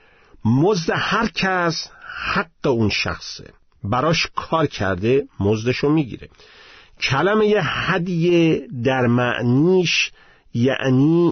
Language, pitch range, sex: Persian, 110-170 Hz, male